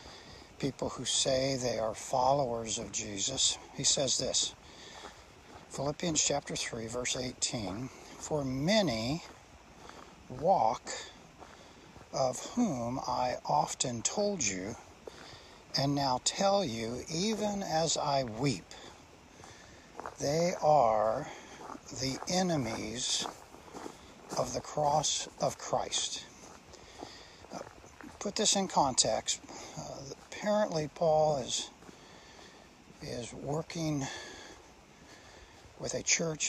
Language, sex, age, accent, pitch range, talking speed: English, male, 60-79, American, 125-160 Hz, 90 wpm